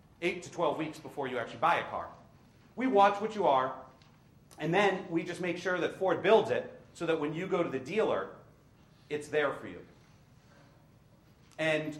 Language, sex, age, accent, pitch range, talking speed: English, male, 40-59, American, 130-170 Hz, 190 wpm